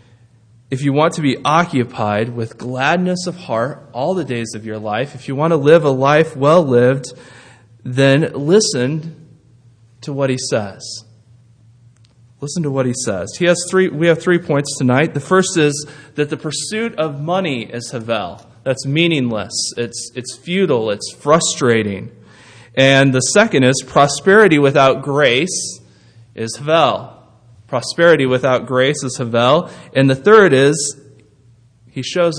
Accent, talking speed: American, 150 wpm